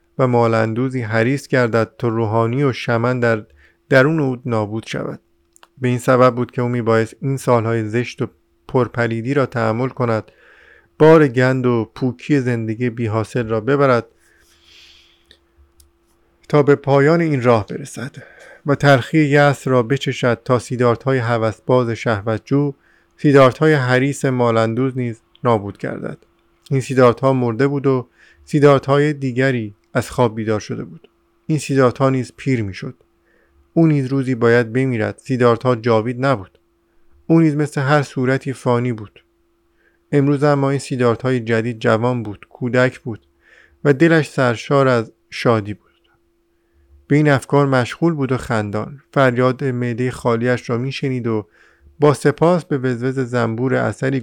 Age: 50-69